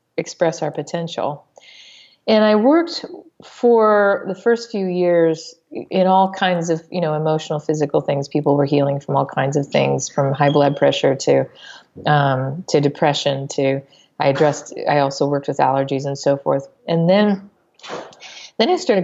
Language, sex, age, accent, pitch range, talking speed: English, female, 40-59, American, 145-175 Hz, 165 wpm